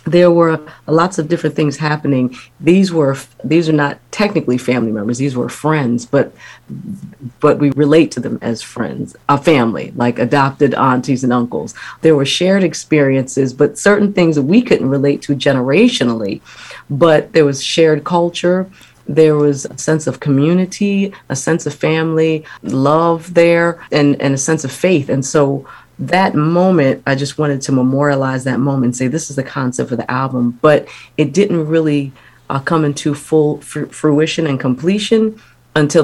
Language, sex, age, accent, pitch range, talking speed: English, female, 40-59, American, 130-160 Hz, 170 wpm